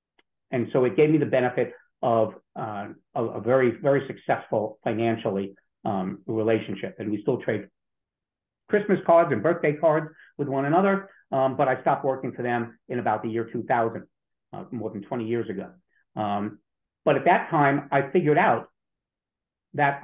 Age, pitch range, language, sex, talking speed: 50-69, 115-145 Hz, English, male, 165 wpm